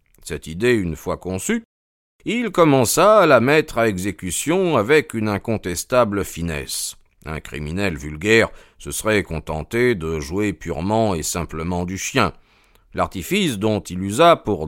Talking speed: 140 wpm